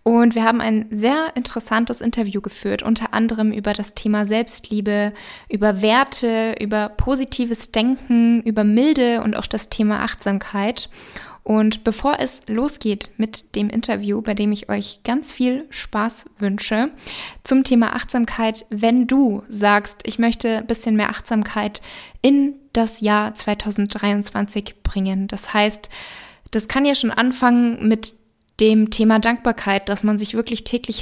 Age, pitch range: 20-39, 210-240 Hz